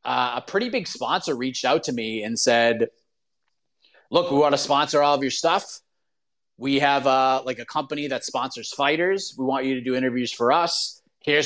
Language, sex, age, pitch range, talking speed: English, male, 30-49, 130-150 Hz, 200 wpm